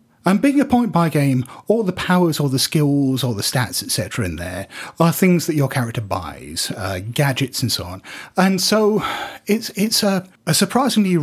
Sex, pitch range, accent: male, 115-180 Hz, British